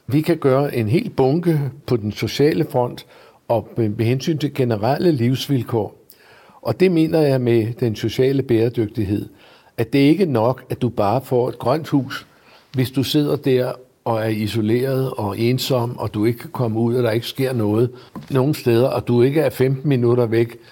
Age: 60-79